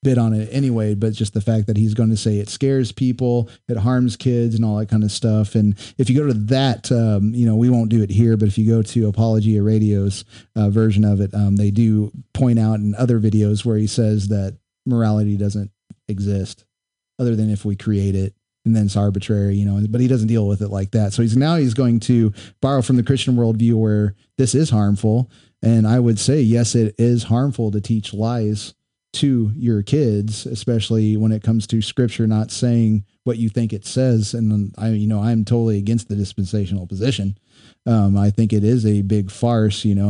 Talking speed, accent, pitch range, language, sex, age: 220 wpm, American, 105-115 Hz, English, male, 30-49